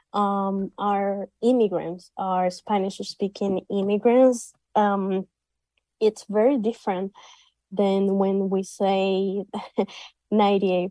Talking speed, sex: 85 wpm, female